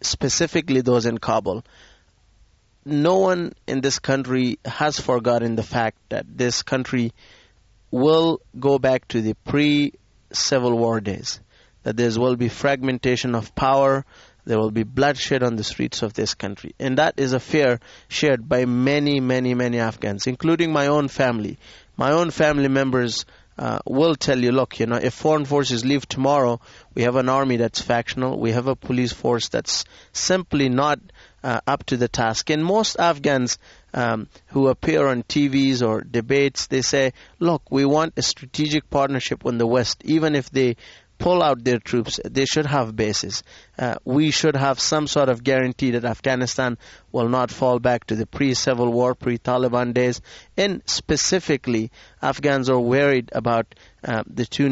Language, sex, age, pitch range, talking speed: English, male, 30-49, 120-140 Hz, 170 wpm